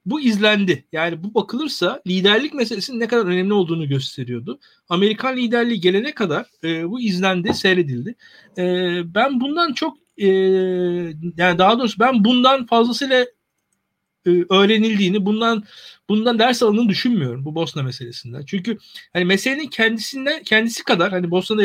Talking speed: 135 wpm